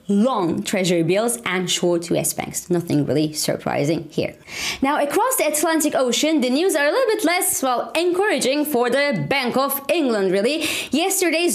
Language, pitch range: English, 190-285 Hz